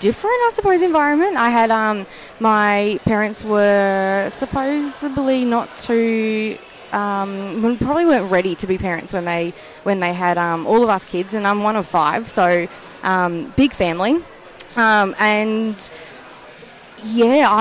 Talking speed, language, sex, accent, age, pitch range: 145 wpm, English, female, Australian, 20-39, 190-230 Hz